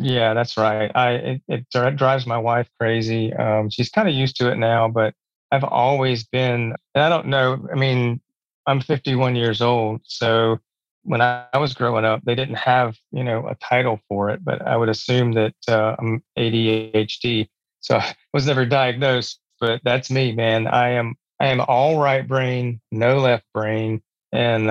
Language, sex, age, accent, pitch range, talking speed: English, male, 30-49, American, 115-130 Hz, 180 wpm